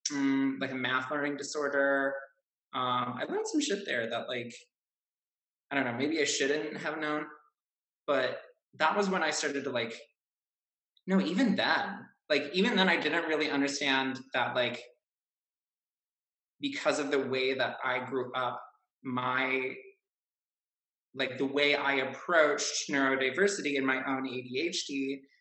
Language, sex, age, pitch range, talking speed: English, male, 20-39, 125-150 Hz, 140 wpm